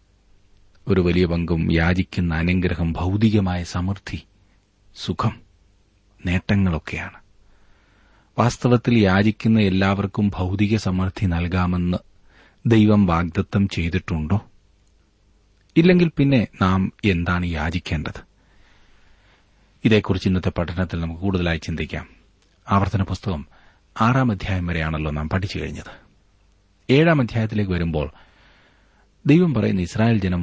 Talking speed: 85 wpm